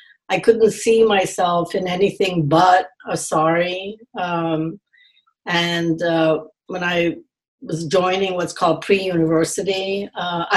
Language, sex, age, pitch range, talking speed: English, female, 60-79, 165-200 Hz, 115 wpm